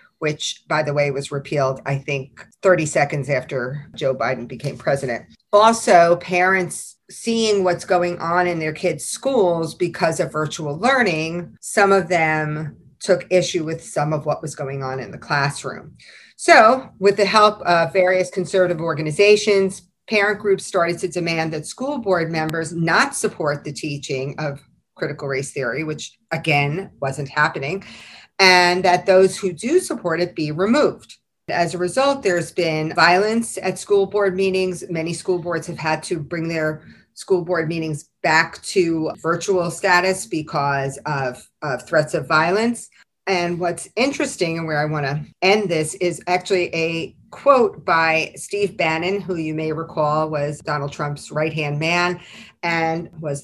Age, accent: 40-59, American